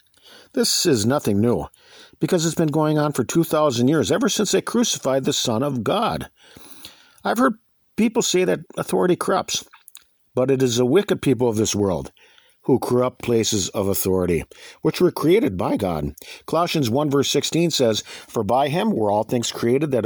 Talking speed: 175 wpm